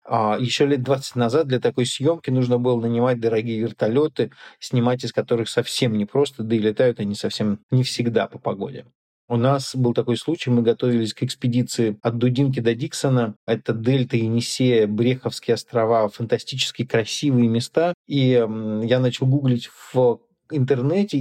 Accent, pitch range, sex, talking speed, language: native, 115-130 Hz, male, 150 wpm, Russian